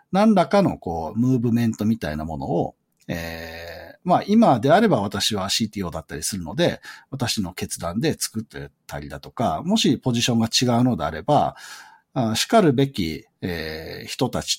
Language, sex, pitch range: Japanese, male, 110-180 Hz